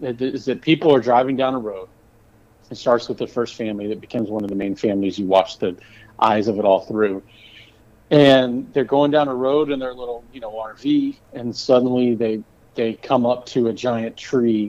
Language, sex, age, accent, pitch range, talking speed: English, male, 40-59, American, 105-125 Hz, 210 wpm